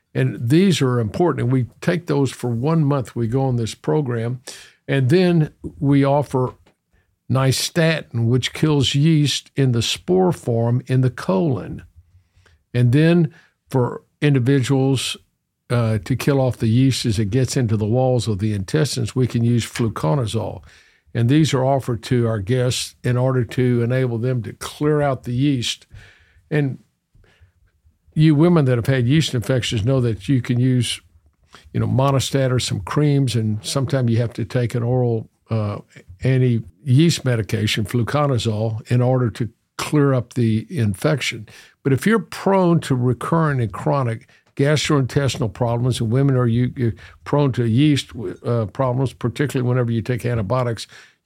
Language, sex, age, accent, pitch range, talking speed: English, male, 50-69, American, 115-140 Hz, 160 wpm